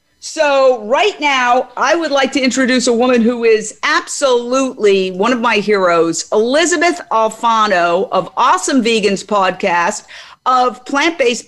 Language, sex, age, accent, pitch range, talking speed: English, female, 50-69, American, 205-265 Hz, 130 wpm